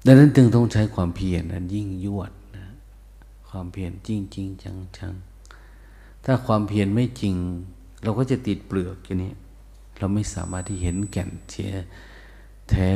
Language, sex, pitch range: Thai, male, 90-105 Hz